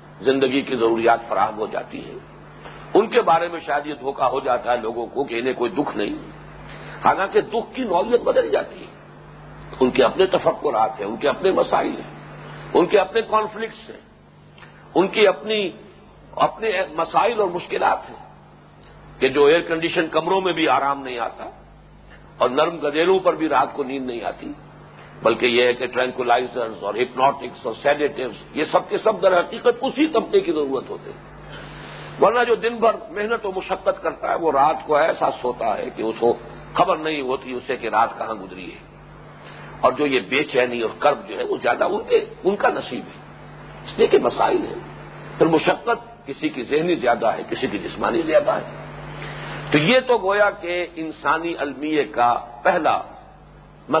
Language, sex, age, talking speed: English, male, 60-79, 145 wpm